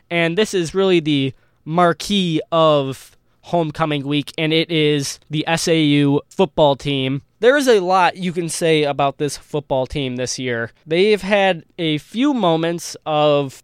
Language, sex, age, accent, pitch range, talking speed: English, male, 20-39, American, 150-185 Hz, 155 wpm